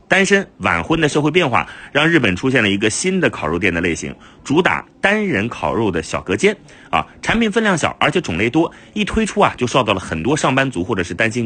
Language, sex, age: Chinese, male, 30-49